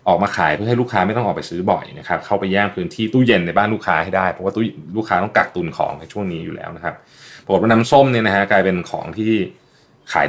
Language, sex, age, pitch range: Thai, male, 20-39, 95-125 Hz